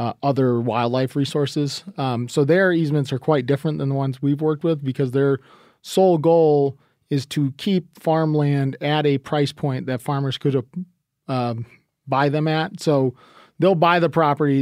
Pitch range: 125-150 Hz